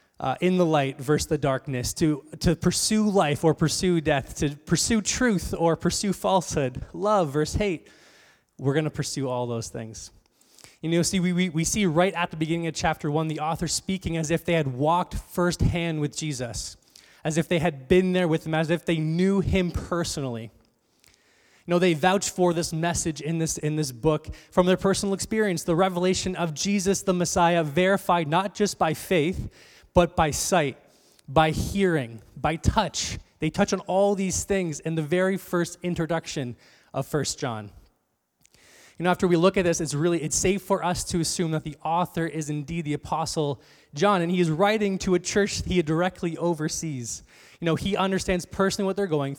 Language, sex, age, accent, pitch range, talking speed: English, male, 20-39, American, 150-185 Hz, 190 wpm